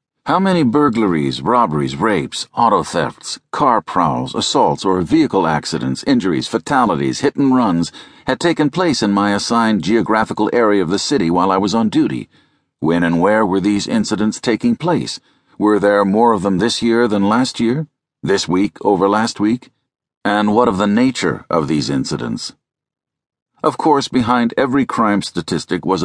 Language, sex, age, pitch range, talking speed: English, male, 50-69, 95-120 Hz, 160 wpm